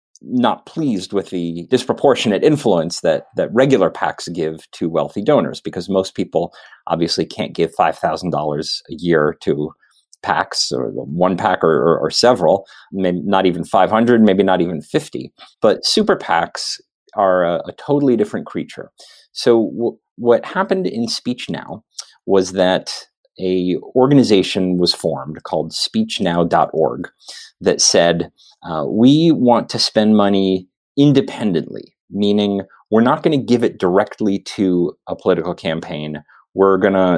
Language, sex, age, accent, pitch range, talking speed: English, male, 30-49, American, 90-115 Hz, 140 wpm